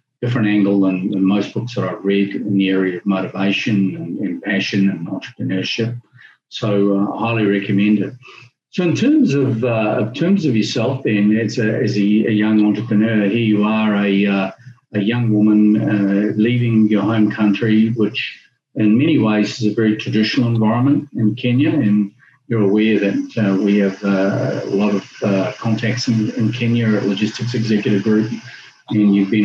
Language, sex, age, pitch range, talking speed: English, male, 50-69, 100-120 Hz, 180 wpm